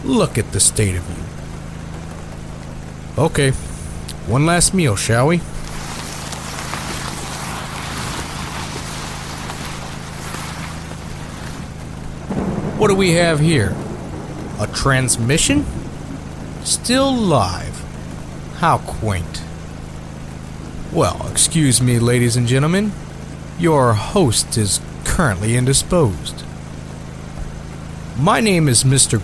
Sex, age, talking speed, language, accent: male, 50-69, 80 wpm, English, American